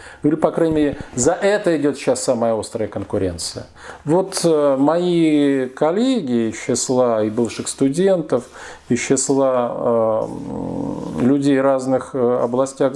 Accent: native